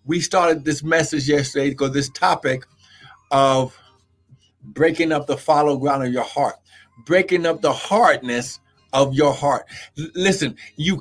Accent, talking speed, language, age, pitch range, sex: American, 140 wpm, English, 50-69, 135-180 Hz, male